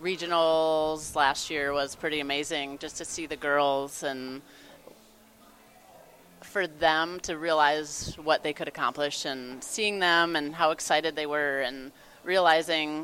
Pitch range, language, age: 145-175 Hz, English, 30-49